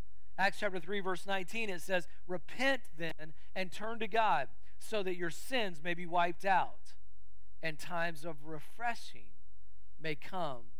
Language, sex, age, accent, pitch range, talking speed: English, male, 40-59, American, 140-185 Hz, 150 wpm